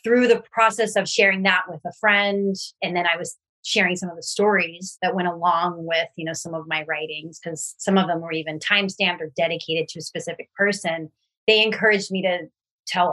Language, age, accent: English, 30-49, American